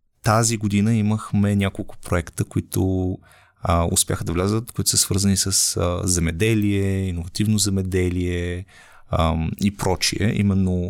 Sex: male